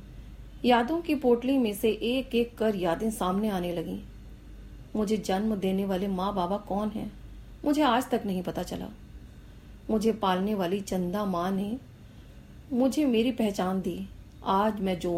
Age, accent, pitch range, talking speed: 40-59, Indian, 175-255 Hz, 145 wpm